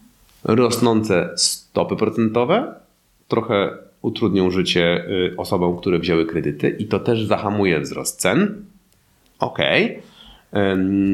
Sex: male